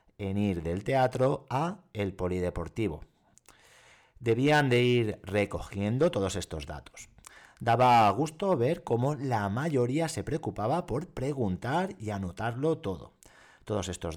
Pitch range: 95-140 Hz